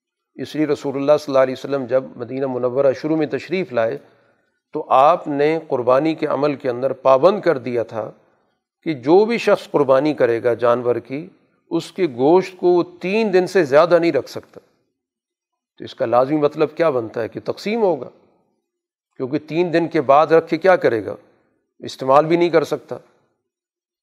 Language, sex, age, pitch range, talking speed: Urdu, male, 40-59, 130-170 Hz, 180 wpm